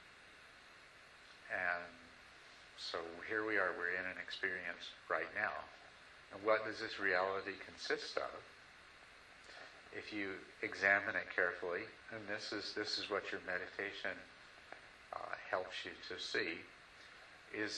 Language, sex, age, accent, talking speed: English, male, 50-69, American, 125 wpm